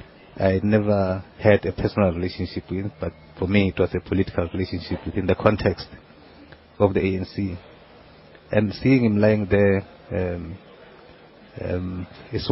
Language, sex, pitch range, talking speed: English, male, 90-105 Hz, 140 wpm